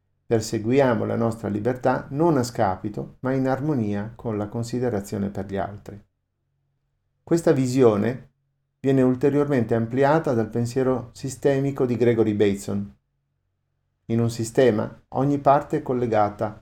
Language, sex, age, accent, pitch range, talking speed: Italian, male, 50-69, native, 110-130 Hz, 125 wpm